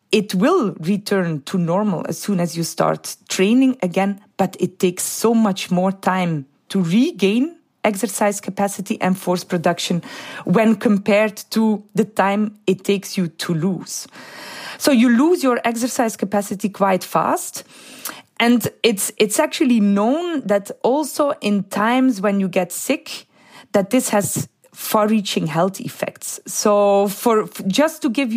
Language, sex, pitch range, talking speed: English, female, 195-255 Hz, 145 wpm